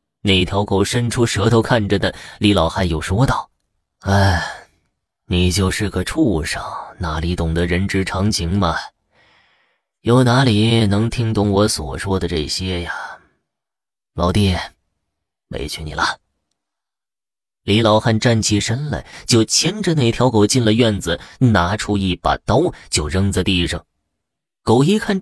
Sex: male